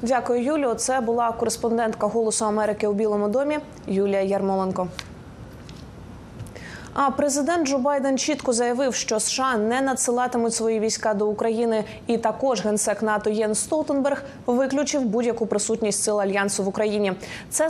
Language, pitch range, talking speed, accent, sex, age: Ukrainian, 215-260 Hz, 135 wpm, native, female, 20-39